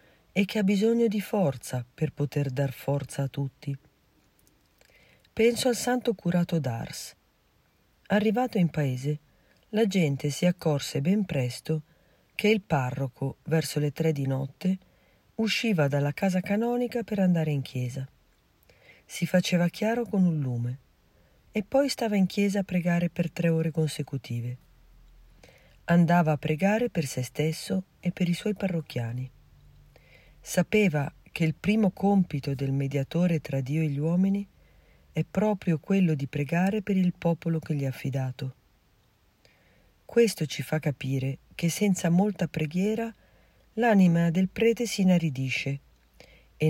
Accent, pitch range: native, 140-195 Hz